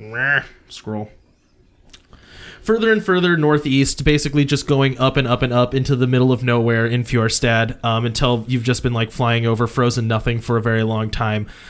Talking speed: 180 wpm